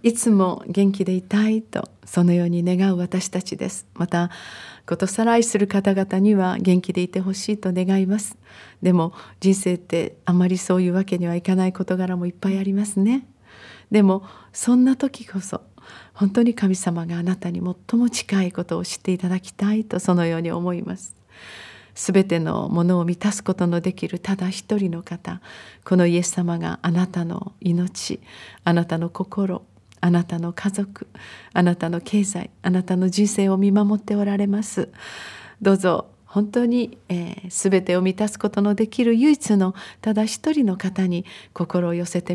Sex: female